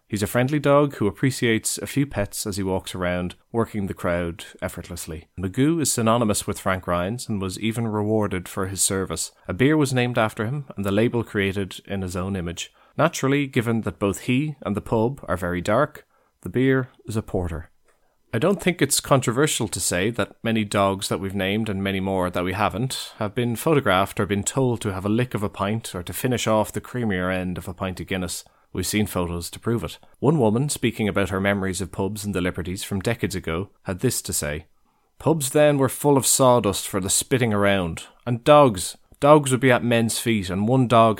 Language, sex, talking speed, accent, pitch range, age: English, male, 215 wpm, Irish, 95-120 Hz, 30-49